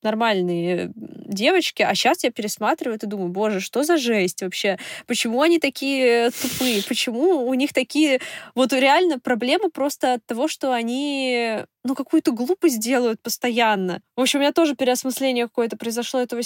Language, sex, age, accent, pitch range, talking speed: Russian, female, 20-39, native, 205-260 Hz, 155 wpm